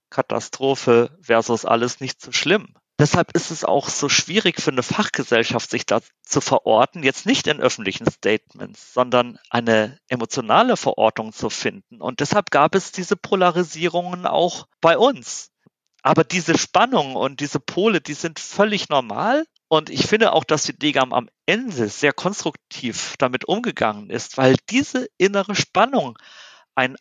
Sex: male